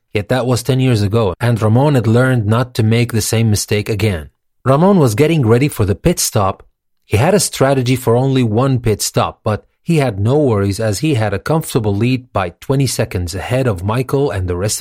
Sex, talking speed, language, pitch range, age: male, 220 wpm, English, 105-135 Hz, 30-49